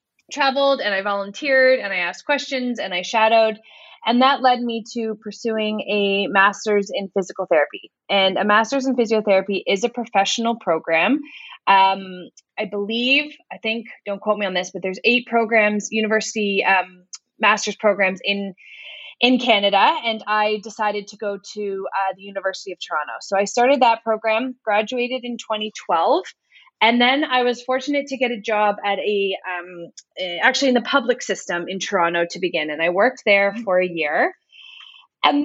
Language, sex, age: English, female, 20-39